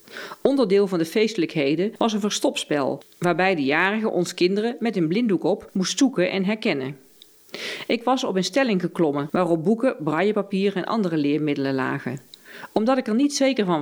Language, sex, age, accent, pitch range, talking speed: Dutch, female, 40-59, Dutch, 160-220 Hz, 170 wpm